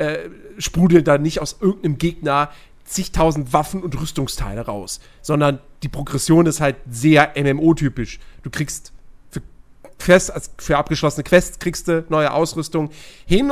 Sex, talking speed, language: male, 140 wpm, German